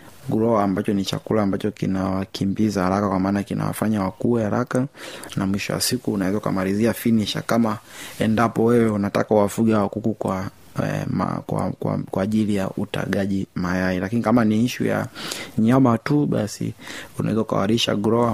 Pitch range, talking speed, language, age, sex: 95-115 Hz, 145 wpm, Swahili, 30-49, male